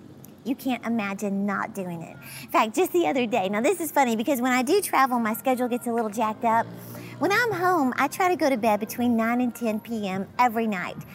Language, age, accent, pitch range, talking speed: English, 40-59, American, 230-300 Hz, 235 wpm